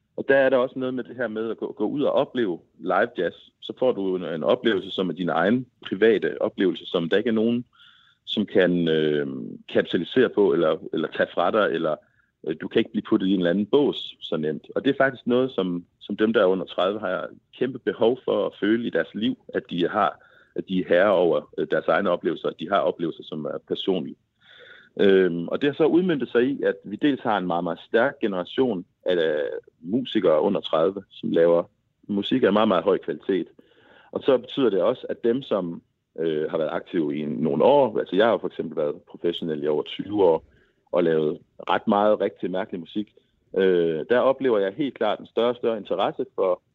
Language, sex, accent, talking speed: Danish, male, native, 220 wpm